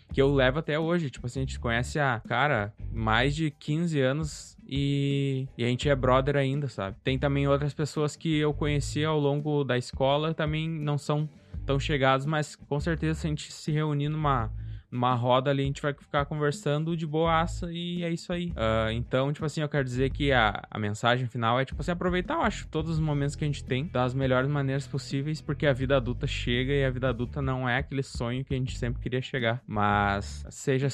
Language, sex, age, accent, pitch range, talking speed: Portuguese, male, 20-39, Brazilian, 120-145 Hz, 215 wpm